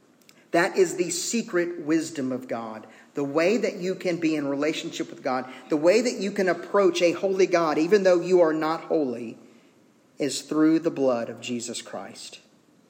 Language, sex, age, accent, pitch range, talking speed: English, male, 40-59, American, 130-170 Hz, 180 wpm